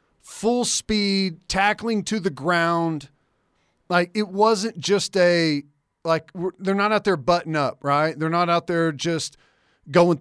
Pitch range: 150-190 Hz